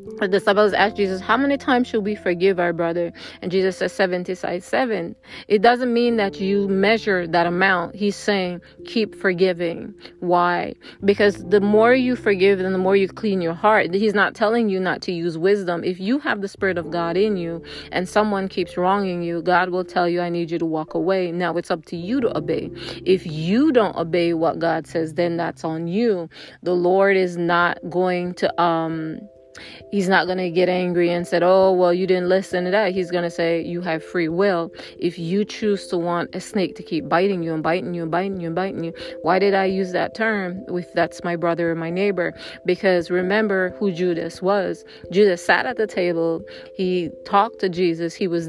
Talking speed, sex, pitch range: 210 wpm, female, 175-200 Hz